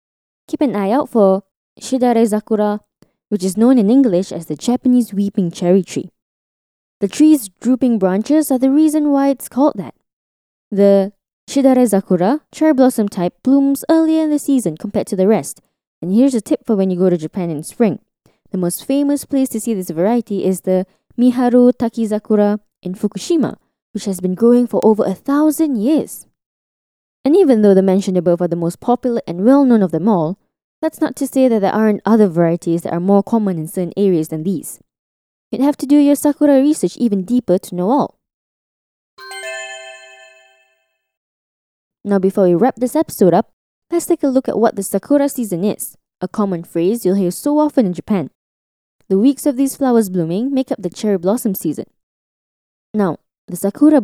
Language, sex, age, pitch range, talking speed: English, female, 10-29, 185-265 Hz, 185 wpm